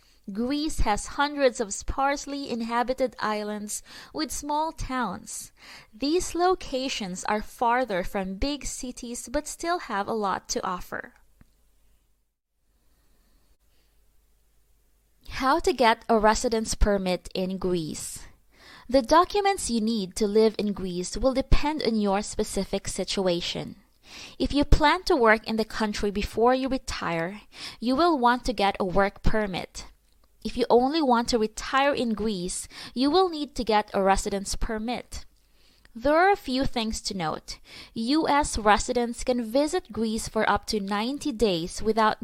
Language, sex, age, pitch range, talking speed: English, female, 20-39, 205-270 Hz, 140 wpm